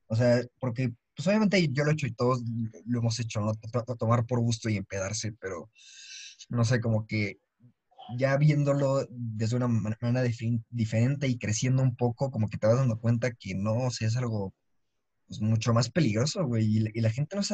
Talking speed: 210 wpm